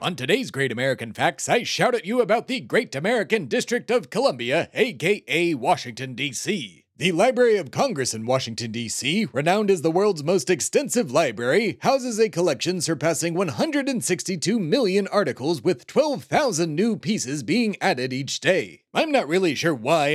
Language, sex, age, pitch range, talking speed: English, male, 30-49, 135-195 Hz, 160 wpm